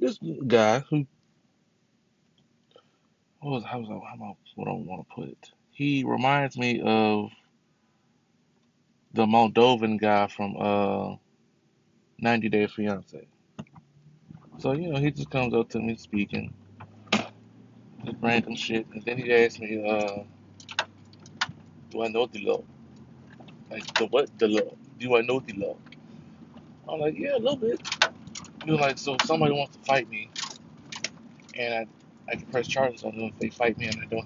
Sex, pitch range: male, 115-170 Hz